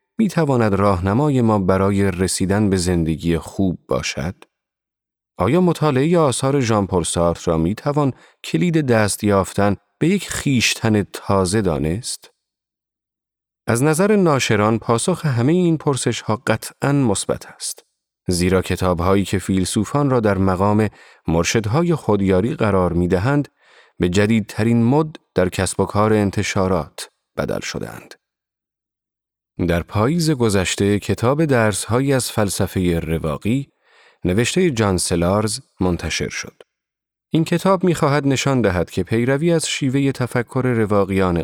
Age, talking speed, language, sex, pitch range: 30-49, 115 wpm, Persian, male, 95-135 Hz